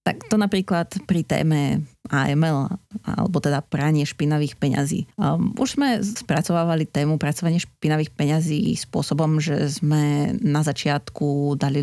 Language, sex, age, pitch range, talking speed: Slovak, female, 30-49, 145-180 Hz, 120 wpm